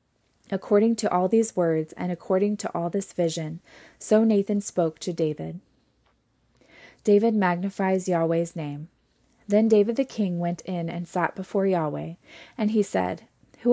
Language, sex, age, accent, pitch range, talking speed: English, female, 20-39, American, 170-210 Hz, 150 wpm